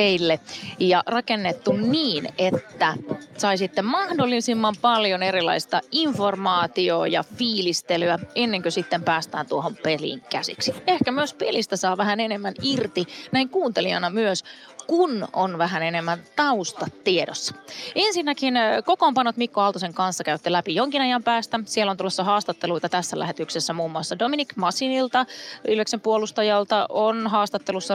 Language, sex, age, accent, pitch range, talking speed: Finnish, female, 20-39, native, 180-245 Hz, 125 wpm